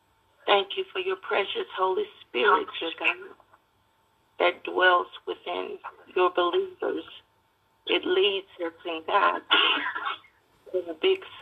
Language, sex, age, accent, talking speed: English, female, 60-79, American, 110 wpm